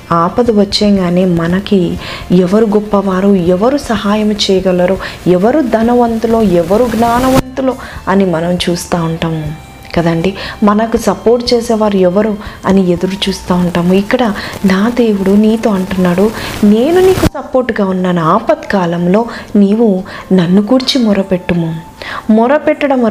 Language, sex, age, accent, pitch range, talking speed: Telugu, female, 20-39, native, 180-240 Hz, 105 wpm